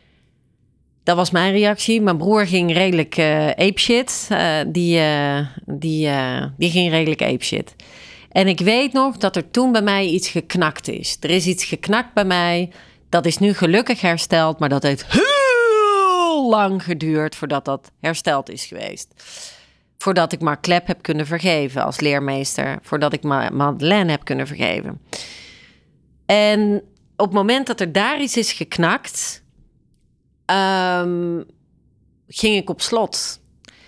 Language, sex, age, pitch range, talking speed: Dutch, female, 40-59, 155-200 Hz, 140 wpm